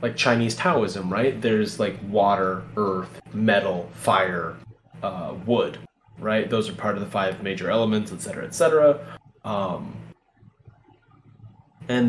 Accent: American